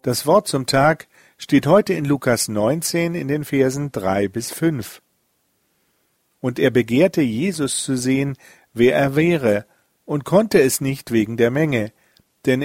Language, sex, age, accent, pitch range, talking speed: German, male, 40-59, German, 115-160 Hz, 150 wpm